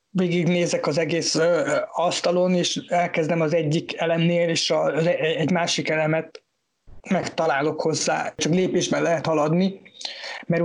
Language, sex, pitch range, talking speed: English, male, 155-180 Hz, 120 wpm